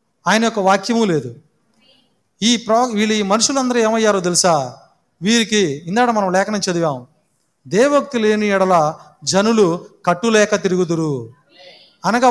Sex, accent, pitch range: male, native, 185-240 Hz